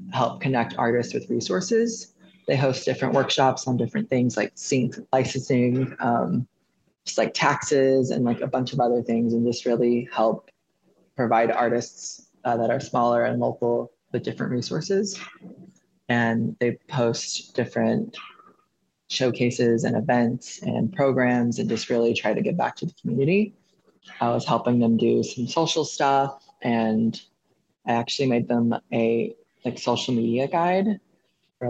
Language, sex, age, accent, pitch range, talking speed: English, female, 20-39, American, 120-145 Hz, 150 wpm